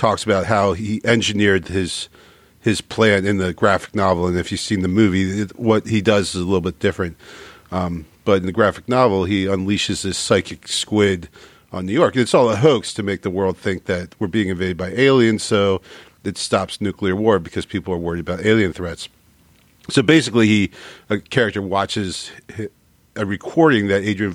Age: 40-59